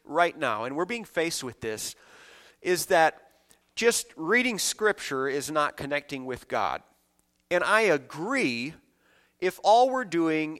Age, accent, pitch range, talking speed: 40-59, American, 145-195 Hz, 140 wpm